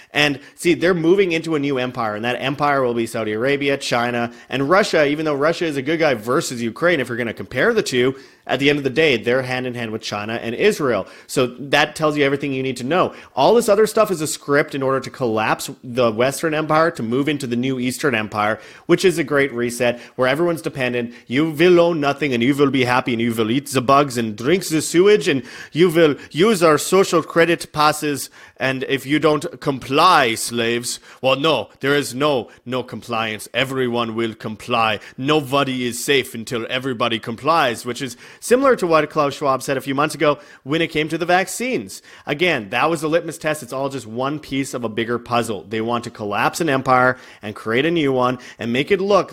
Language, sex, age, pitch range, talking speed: English, male, 30-49, 120-150 Hz, 225 wpm